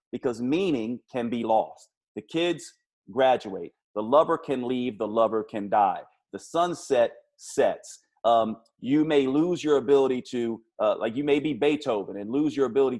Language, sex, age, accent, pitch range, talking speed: English, male, 40-59, American, 115-155 Hz, 165 wpm